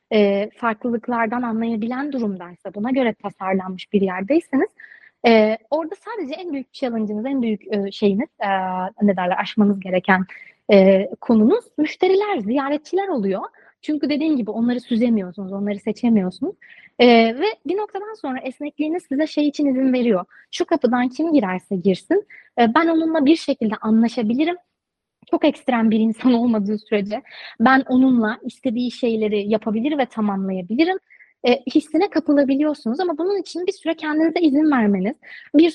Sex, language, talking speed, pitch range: female, Turkish, 130 wpm, 220-320 Hz